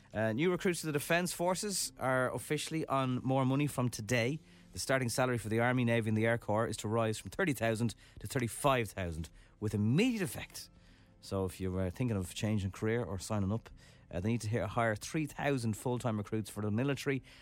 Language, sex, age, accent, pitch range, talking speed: English, male, 30-49, Irish, 95-130 Hz, 205 wpm